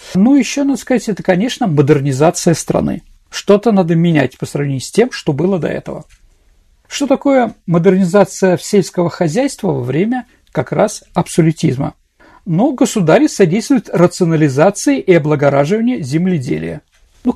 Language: Russian